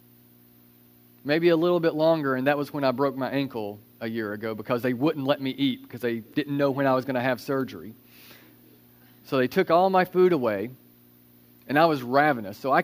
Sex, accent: male, American